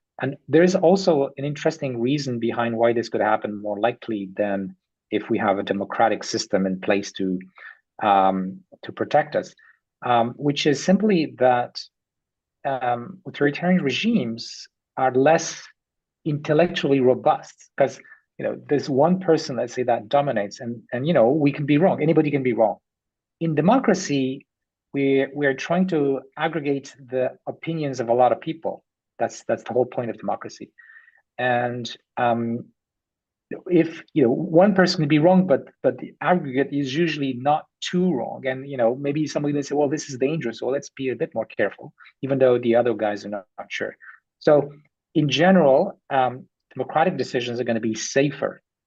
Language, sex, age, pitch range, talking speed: English, male, 40-59, 120-155 Hz, 175 wpm